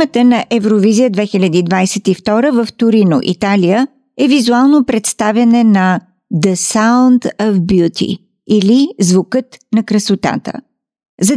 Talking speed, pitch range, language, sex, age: 105 wpm, 200-245 Hz, Bulgarian, female, 50-69